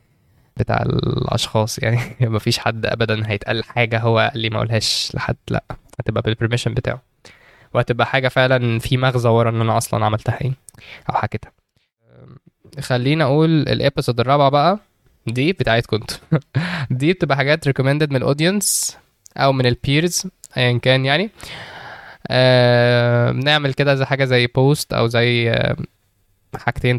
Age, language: 10-29, Arabic